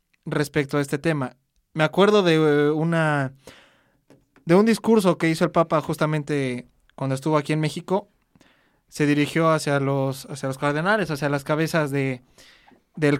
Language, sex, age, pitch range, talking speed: English, male, 20-39, 145-185 Hz, 150 wpm